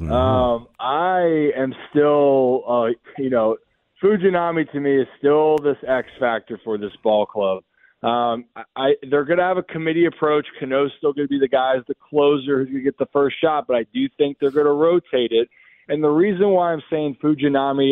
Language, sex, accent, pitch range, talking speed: English, male, American, 125-155 Hz, 200 wpm